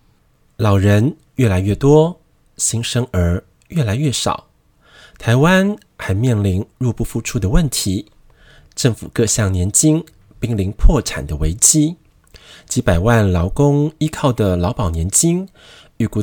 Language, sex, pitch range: Chinese, male, 95-145 Hz